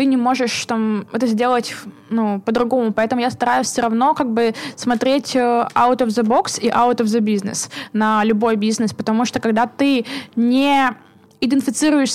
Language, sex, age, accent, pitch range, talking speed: Russian, female, 20-39, native, 220-255 Hz, 165 wpm